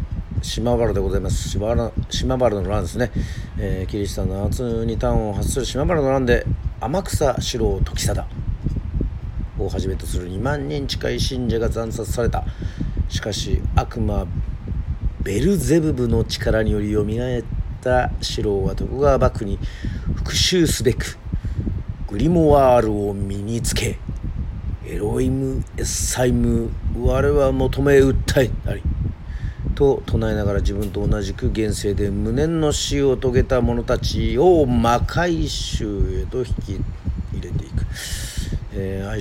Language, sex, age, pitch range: Japanese, male, 40-59, 95-120 Hz